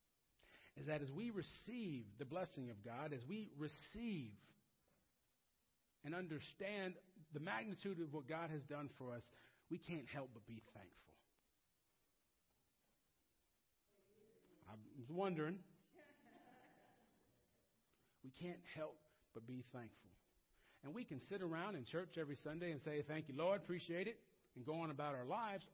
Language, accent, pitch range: English, American, 110-155 Hz